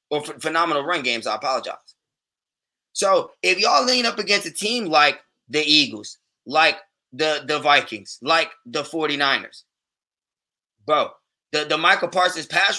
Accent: American